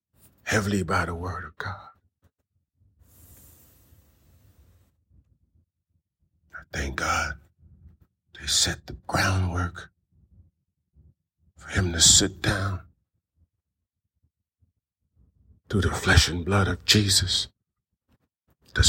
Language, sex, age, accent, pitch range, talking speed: English, male, 50-69, American, 90-125 Hz, 85 wpm